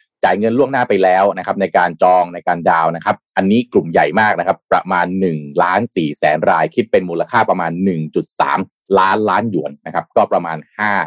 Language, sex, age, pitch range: Thai, male, 30-49, 95-135 Hz